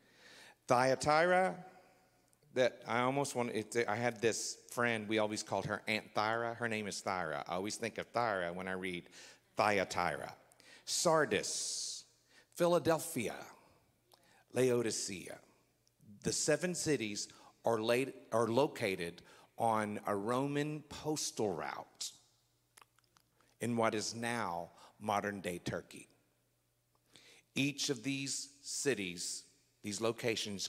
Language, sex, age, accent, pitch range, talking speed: English, male, 50-69, American, 90-135 Hz, 110 wpm